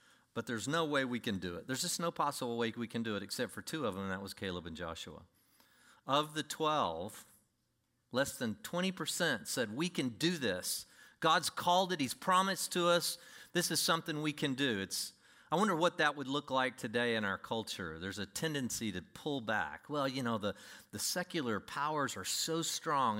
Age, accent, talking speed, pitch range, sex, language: 40-59, American, 210 wpm, 110-170 Hz, male, English